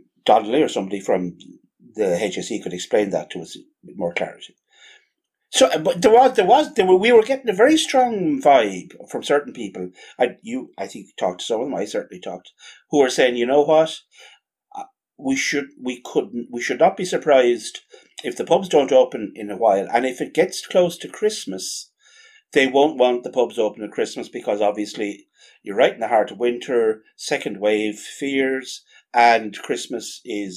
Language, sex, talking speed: English, male, 190 wpm